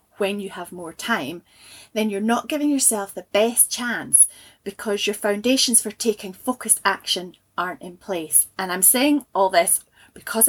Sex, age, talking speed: female, 20-39, 165 wpm